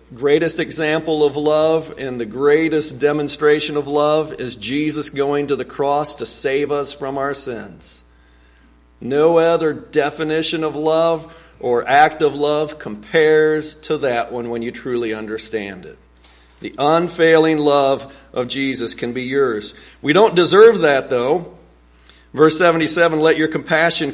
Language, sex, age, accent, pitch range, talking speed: English, male, 50-69, American, 115-155 Hz, 145 wpm